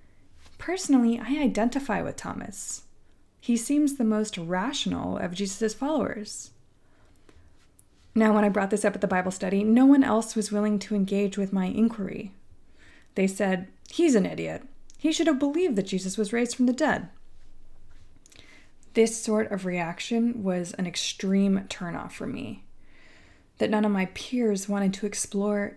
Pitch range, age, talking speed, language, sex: 185-230 Hz, 20-39, 155 wpm, English, female